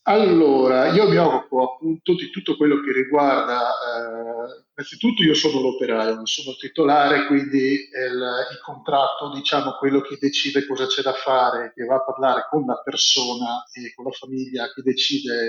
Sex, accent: male, native